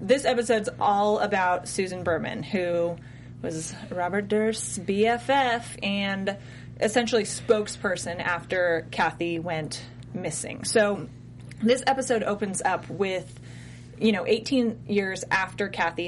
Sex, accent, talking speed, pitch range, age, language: female, American, 110 wpm, 170-210 Hz, 20-39, English